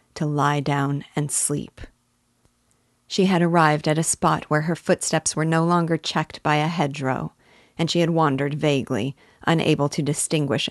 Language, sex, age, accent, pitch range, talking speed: English, female, 40-59, American, 145-160 Hz, 165 wpm